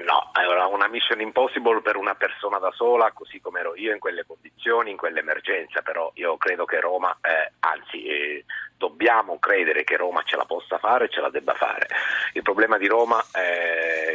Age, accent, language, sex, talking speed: 40-59, native, Italian, male, 190 wpm